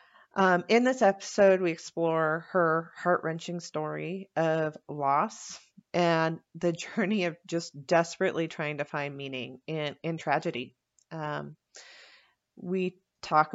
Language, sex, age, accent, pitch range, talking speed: English, female, 40-59, American, 155-185 Hz, 120 wpm